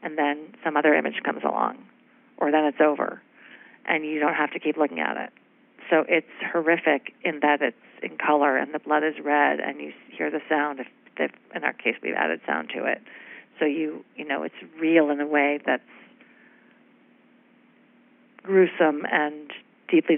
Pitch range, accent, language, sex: 145-195 Hz, American, English, female